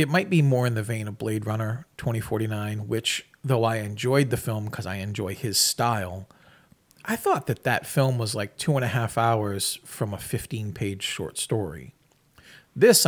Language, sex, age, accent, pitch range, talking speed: English, male, 40-59, American, 110-140 Hz, 185 wpm